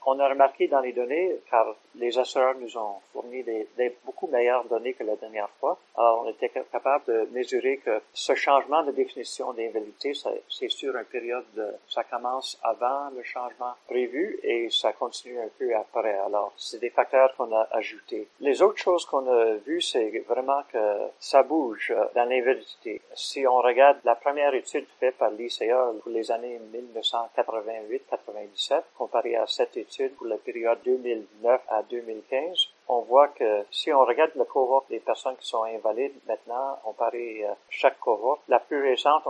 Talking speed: 175 wpm